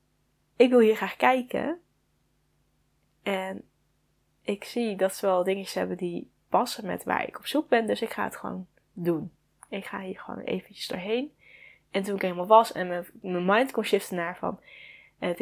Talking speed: 185 wpm